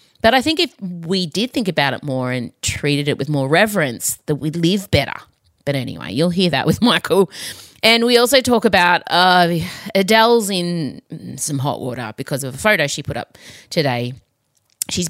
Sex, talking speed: female, 185 wpm